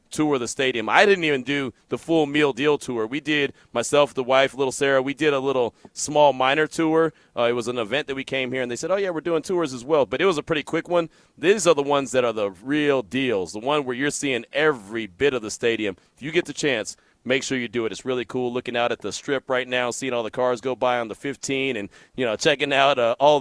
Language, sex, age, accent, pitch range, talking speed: English, male, 30-49, American, 125-160 Hz, 275 wpm